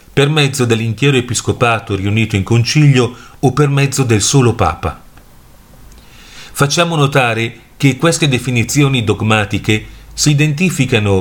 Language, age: Italian, 40-59